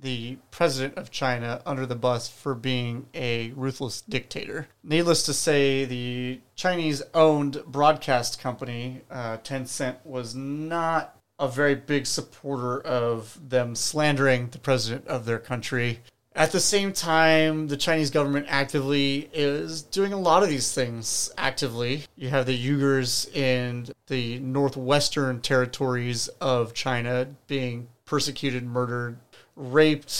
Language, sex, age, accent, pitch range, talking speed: English, male, 30-49, American, 125-150 Hz, 130 wpm